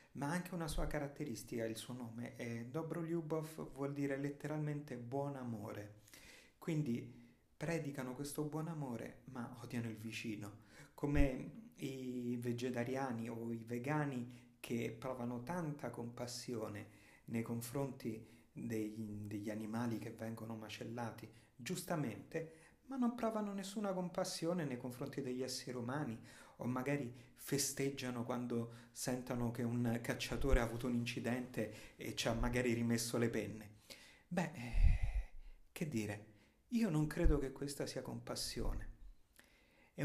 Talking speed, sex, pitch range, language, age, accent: 125 wpm, male, 115-145 Hz, Italian, 40-59, native